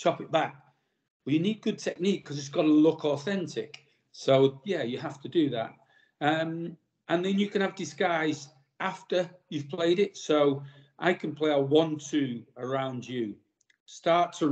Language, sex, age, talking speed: English, male, 40-59, 175 wpm